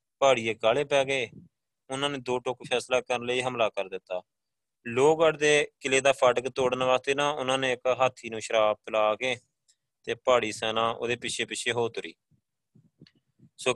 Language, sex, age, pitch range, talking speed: Punjabi, male, 20-39, 115-135 Hz, 165 wpm